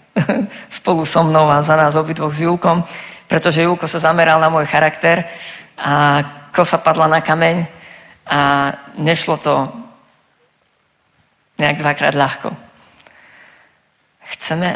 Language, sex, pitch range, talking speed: Slovak, female, 150-185 Hz, 115 wpm